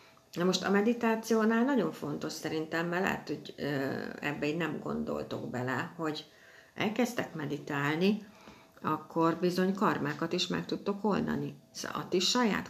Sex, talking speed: female, 130 wpm